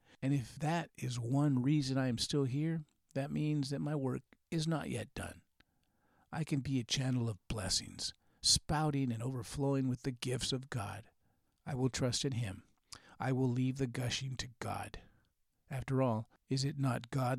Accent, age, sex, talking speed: American, 50-69, male, 180 wpm